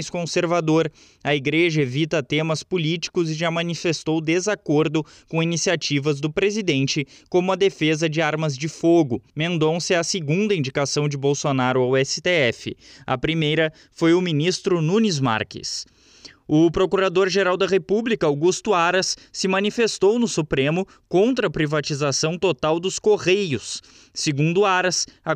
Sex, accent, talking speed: male, Brazilian, 135 wpm